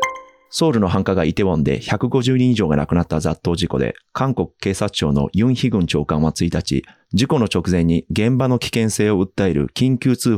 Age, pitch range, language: 30-49, 85-120 Hz, Japanese